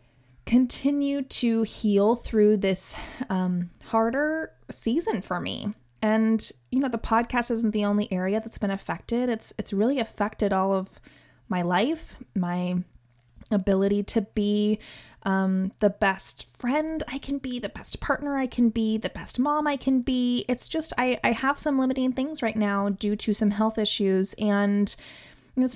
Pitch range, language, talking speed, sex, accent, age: 190-235 Hz, English, 165 wpm, female, American, 20-39